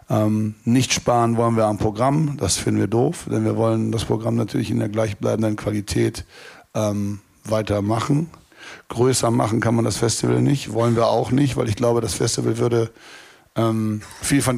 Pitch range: 105-120 Hz